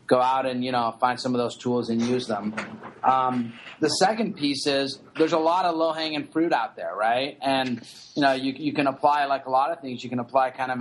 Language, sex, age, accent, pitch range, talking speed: English, male, 30-49, American, 120-140 Hz, 245 wpm